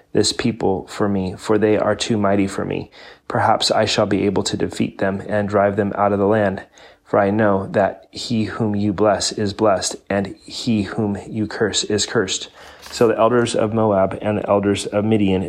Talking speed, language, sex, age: 205 wpm, English, male, 30-49